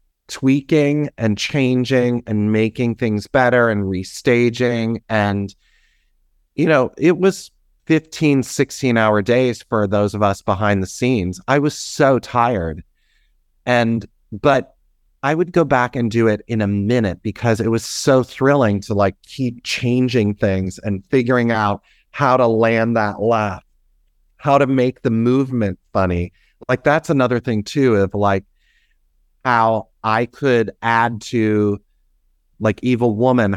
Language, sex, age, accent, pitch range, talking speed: English, male, 30-49, American, 100-125 Hz, 145 wpm